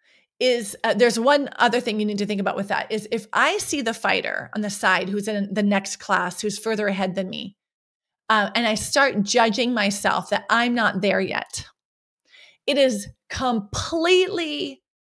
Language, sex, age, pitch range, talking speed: English, female, 30-49, 200-255 Hz, 185 wpm